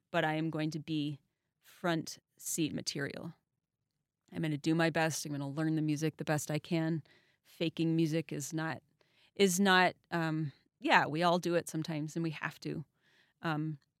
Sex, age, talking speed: female, 30-49, 185 wpm